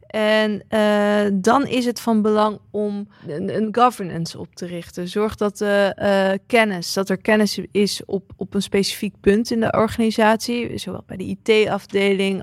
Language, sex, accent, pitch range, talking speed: Dutch, female, Dutch, 185-215 Hz, 170 wpm